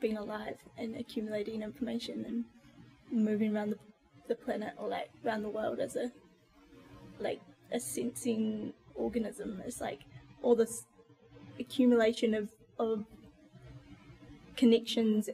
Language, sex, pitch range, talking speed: English, female, 220-240 Hz, 115 wpm